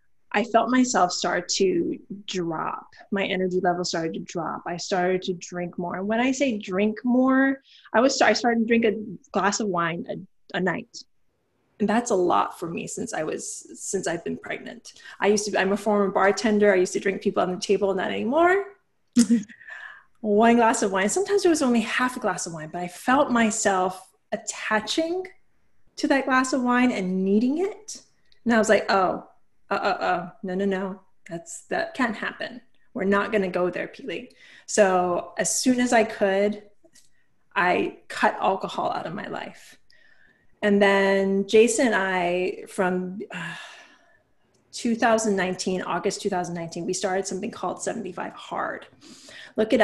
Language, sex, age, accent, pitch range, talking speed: English, female, 20-39, American, 185-240 Hz, 175 wpm